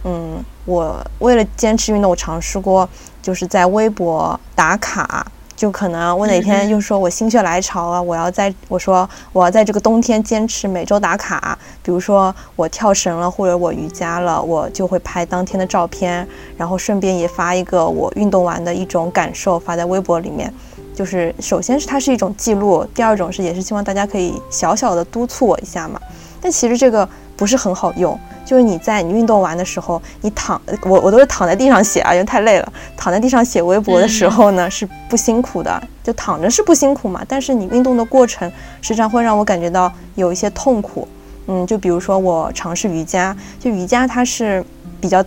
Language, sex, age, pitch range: Chinese, female, 20-39, 175-220 Hz